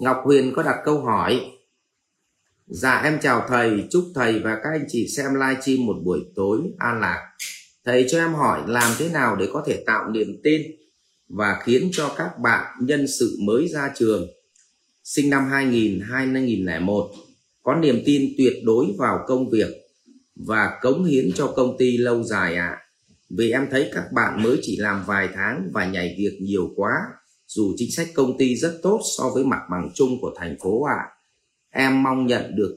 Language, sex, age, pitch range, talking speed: Vietnamese, male, 30-49, 105-150 Hz, 190 wpm